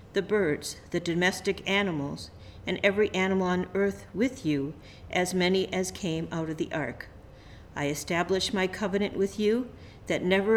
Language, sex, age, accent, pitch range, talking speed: English, female, 50-69, American, 160-195 Hz, 160 wpm